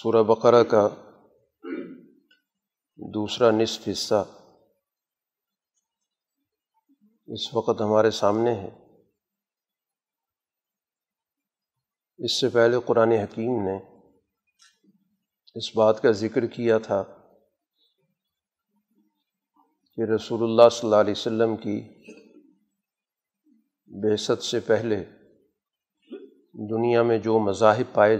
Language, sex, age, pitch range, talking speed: Urdu, male, 40-59, 105-120 Hz, 85 wpm